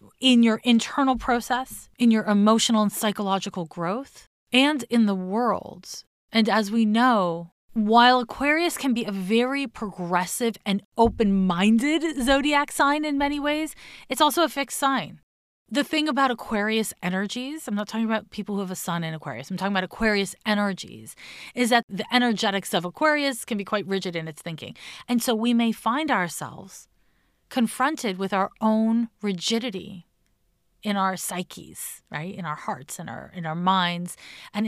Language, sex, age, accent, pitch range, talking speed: English, female, 30-49, American, 190-260 Hz, 165 wpm